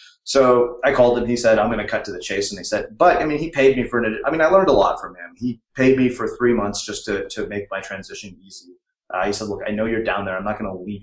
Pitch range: 100-135 Hz